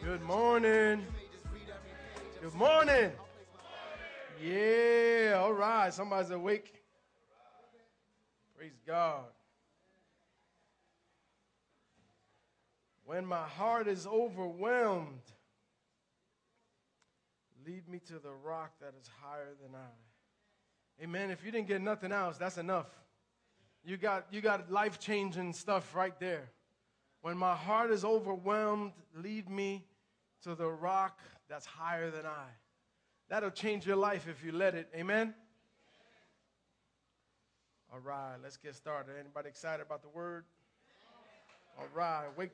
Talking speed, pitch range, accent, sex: 110 wpm, 170-230 Hz, American, male